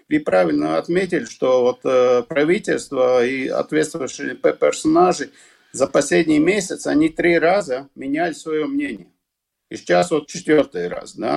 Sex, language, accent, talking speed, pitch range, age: male, Russian, native, 130 wpm, 145-185 Hz, 50-69